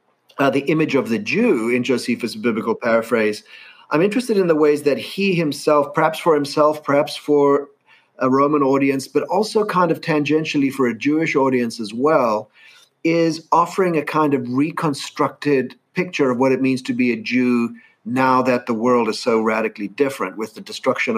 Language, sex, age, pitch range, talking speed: English, male, 40-59, 120-155 Hz, 180 wpm